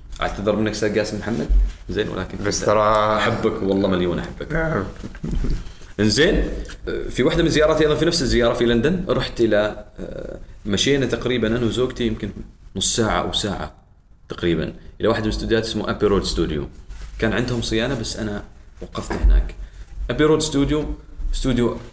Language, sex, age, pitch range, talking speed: Arabic, male, 30-49, 90-125 Hz, 150 wpm